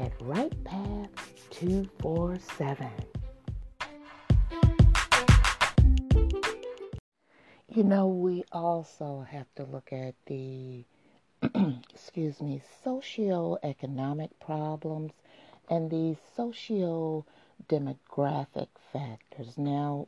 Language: English